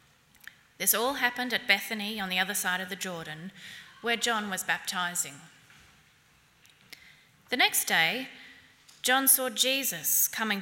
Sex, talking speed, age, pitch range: female, 130 wpm, 30-49, 180-245 Hz